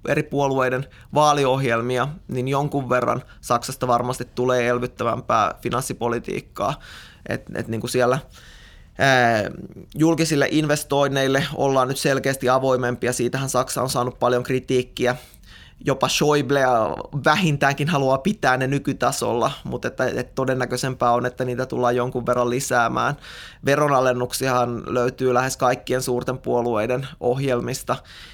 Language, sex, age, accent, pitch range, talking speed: Finnish, male, 20-39, native, 125-135 Hz, 115 wpm